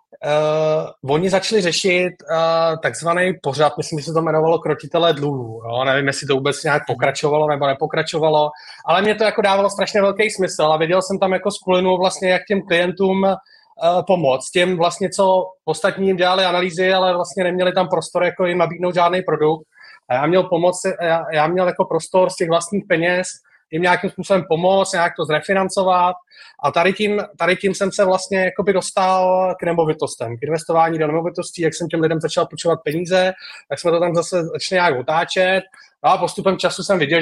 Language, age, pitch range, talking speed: Czech, 30-49, 155-185 Hz, 180 wpm